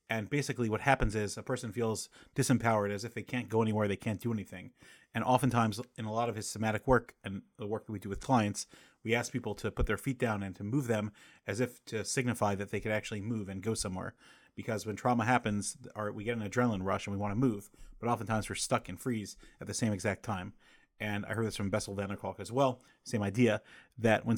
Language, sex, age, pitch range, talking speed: English, male, 30-49, 105-120 Hz, 245 wpm